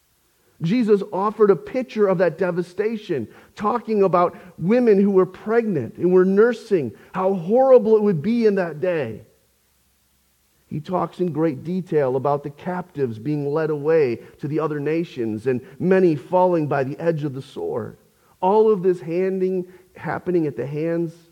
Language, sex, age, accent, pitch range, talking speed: English, male, 40-59, American, 115-185 Hz, 160 wpm